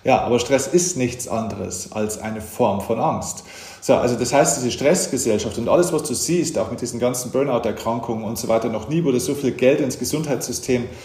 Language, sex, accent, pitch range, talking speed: German, male, German, 115-140 Hz, 205 wpm